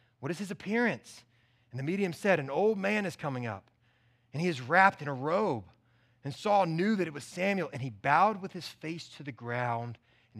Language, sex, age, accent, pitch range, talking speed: English, male, 30-49, American, 120-170 Hz, 220 wpm